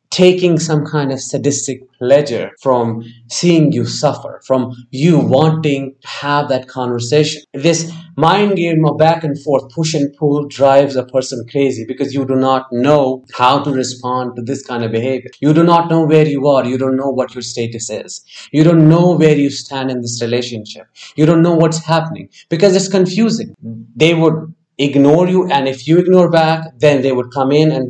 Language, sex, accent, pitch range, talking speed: English, male, Indian, 125-160 Hz, 195 wpm